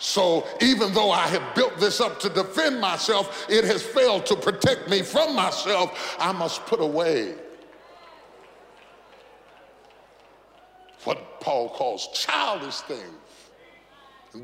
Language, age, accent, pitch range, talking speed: English, 40-59, American, 200-320 Hz, 120 wpm